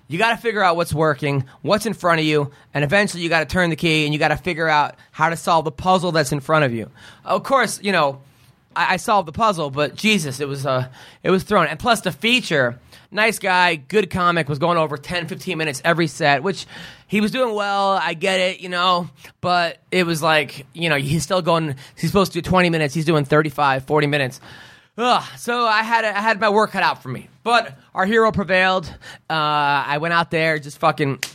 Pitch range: 145-185 Hz